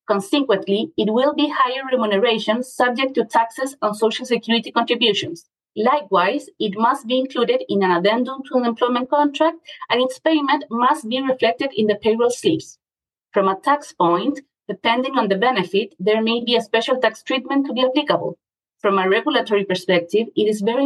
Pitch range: 210-265 Hz